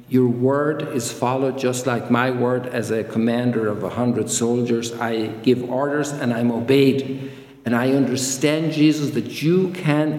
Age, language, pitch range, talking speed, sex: 50-69, English, 120-140 Hz, 165 wpm, male